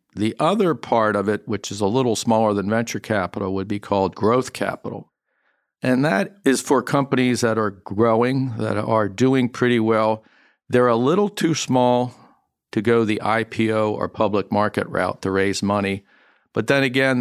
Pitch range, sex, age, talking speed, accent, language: 105-120 Hz, male, 50-69, 175 wpm, American, English